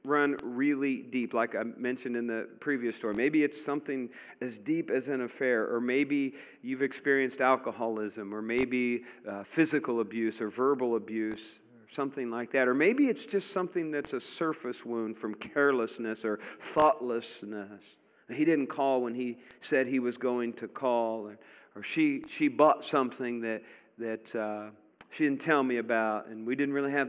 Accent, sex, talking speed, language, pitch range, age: American, male, 170 wpm, English, 115-150 Hz, 40-59